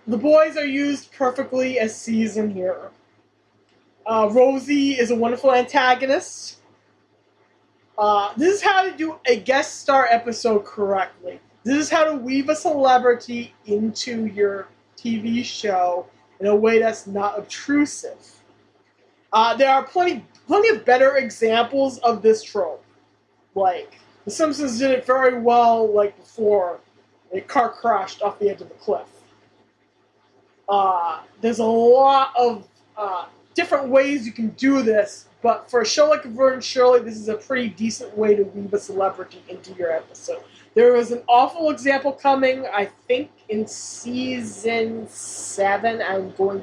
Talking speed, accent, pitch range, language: 150 wpm, American, 210-270 Hz, English